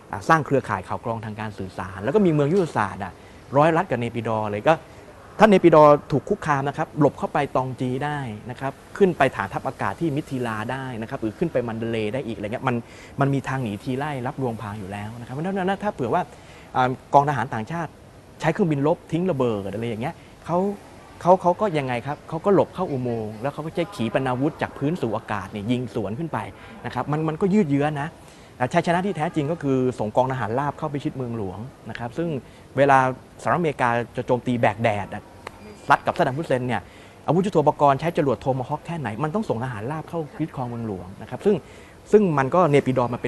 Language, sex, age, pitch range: Thai, male, 20-39, 110-155 Hz